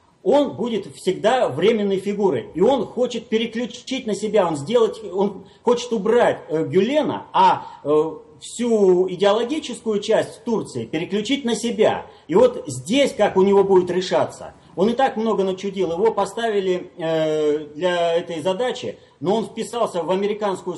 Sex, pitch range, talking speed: male, 170-225 Hz, 145 wpm